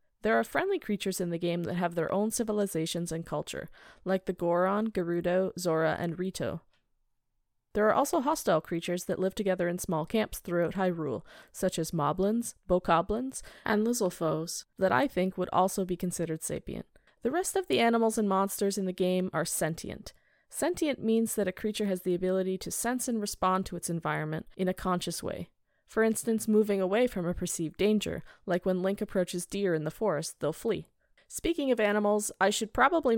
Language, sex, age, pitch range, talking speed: English, female, 20-39, 175-215 Hz, 185 wpm